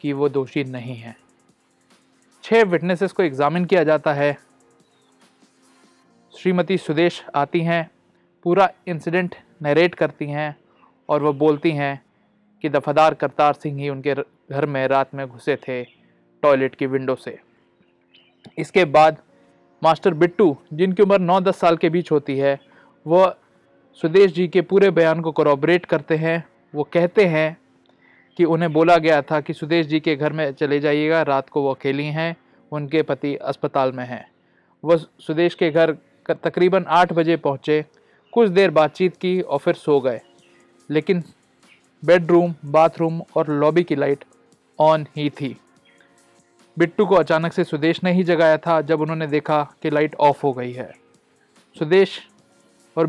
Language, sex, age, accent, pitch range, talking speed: Hindi, male, 20-39, native, 140-170 Hz, 155 wpm